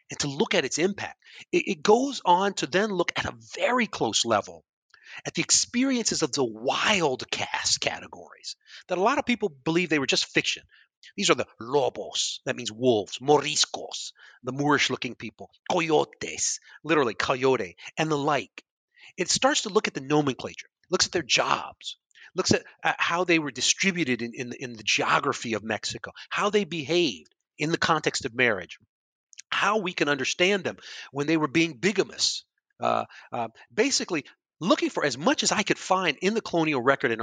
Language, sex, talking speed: English, male, 180 wpm